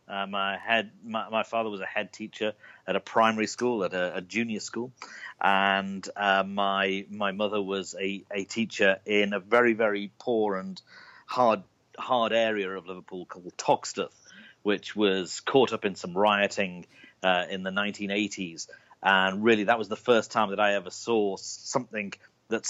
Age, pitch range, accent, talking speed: 40-59, 100-120 Hz, British, 170 wpm